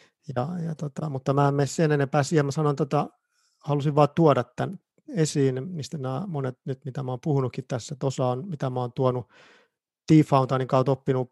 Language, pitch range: Finnish, 130-150 Hz